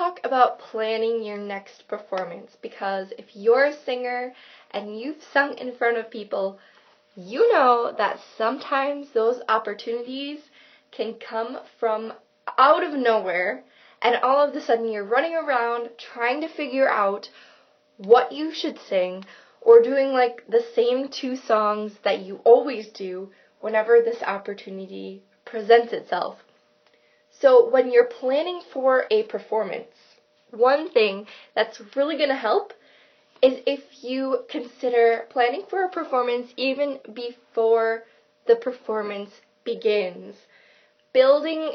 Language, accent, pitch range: English, American, 215-275 Hz